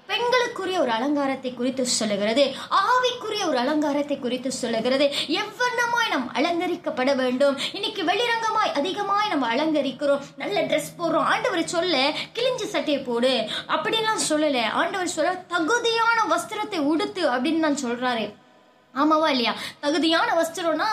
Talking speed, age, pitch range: 120 wpm, 20-39, 275-355 Hz